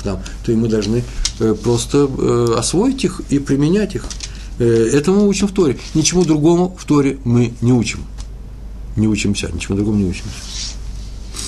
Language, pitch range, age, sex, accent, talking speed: Russian, 105-135 Hz, 50-69, male, native, 150 wpm